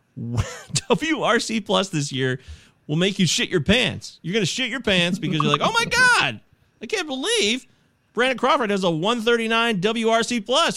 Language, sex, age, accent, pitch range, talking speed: English, male, 30-49, American, 140-220 Hz, 180 wpm